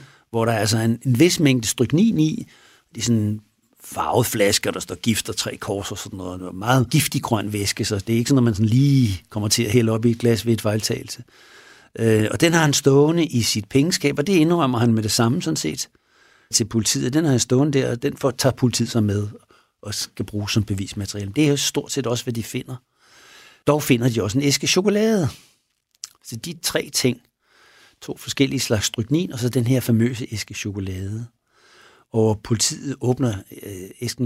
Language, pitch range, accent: Danish, 110-140 Hz, native